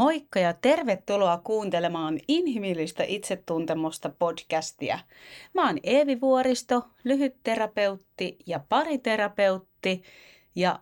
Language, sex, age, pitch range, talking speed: Finnish, female, 30-49, 170-225 Hz, 85 wpm